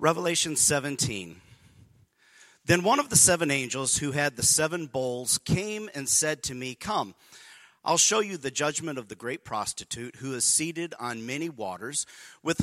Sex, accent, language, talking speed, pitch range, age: male, American, English, 165 wpm, 115-155 Hz, 40-59